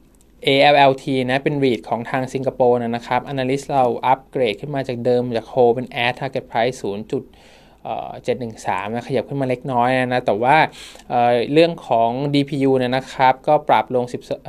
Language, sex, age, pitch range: Thai, male, 20-39, 120-140 Hz